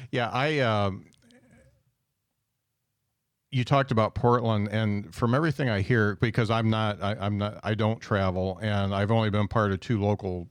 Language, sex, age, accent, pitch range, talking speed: English, male, 50-69, American, 100-115 Hz, 170 wpm